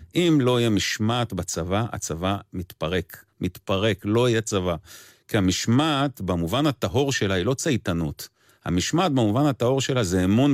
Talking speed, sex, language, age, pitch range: 140 wpm, male, Hebrew, 40-59, 100-145 Hz